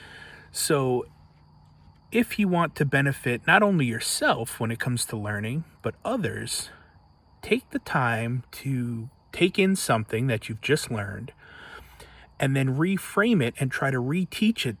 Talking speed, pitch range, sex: 145 wpm, 115-155 Hz, male